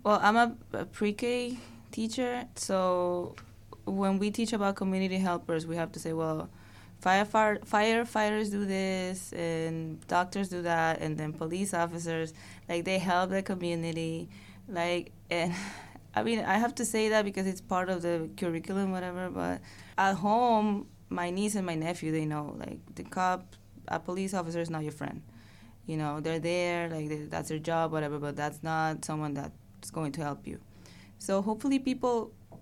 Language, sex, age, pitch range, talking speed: English, female, 20-39, 150-190 Hz, 175 wpm